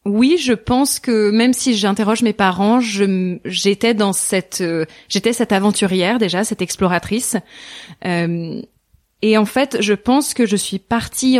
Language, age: French, 20-39